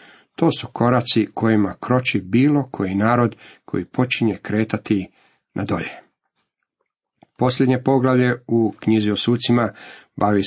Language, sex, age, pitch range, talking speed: Croatian, male, 40-59, 105-120 Hz, 115 wpm